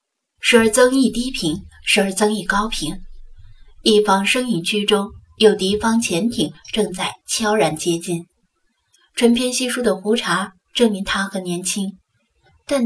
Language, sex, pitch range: Chinese, female, 190-235 Hz